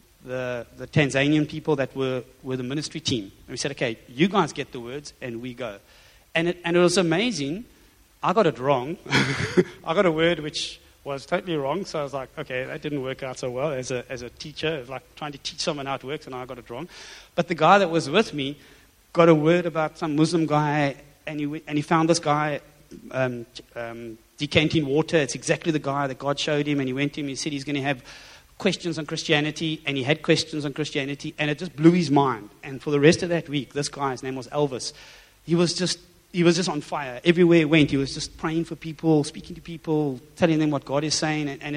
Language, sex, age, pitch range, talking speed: English, male, 30-49, 135-165 Hz, 245 wpm